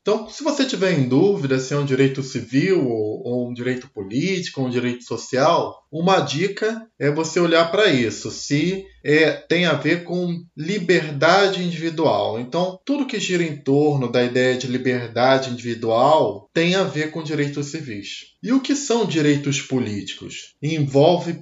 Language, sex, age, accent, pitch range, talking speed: Portuguese, male, 20-39, Brazilian, 130-175 Hz, 165 wpm